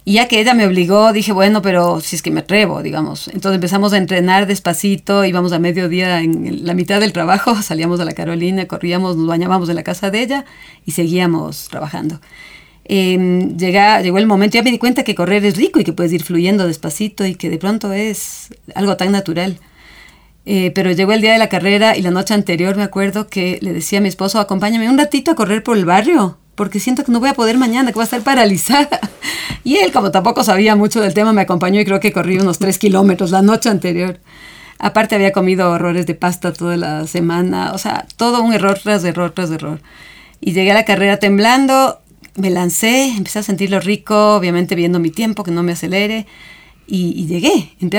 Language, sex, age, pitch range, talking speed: Spanish, female, 40-59, 175-215 Hz, 215 wpm